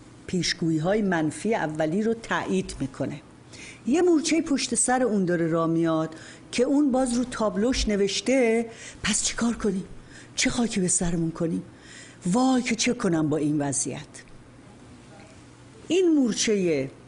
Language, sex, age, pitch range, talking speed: Persian, female, 50-69, 160-240 Hz, 135 wpm